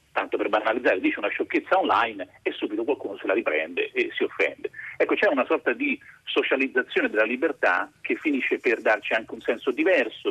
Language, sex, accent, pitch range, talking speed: Italian, male, native, 325-410 Hz, 185 wpm